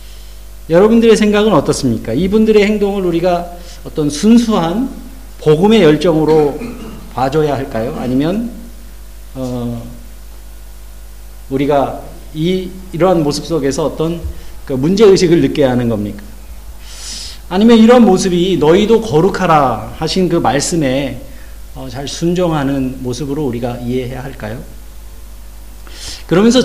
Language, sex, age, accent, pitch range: Korean, male, 40-59, native, 125-175 Hz